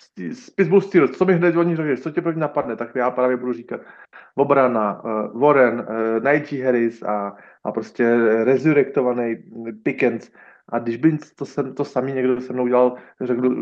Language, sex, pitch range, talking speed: Slovak, male, 115-130 Hz, 175 wpm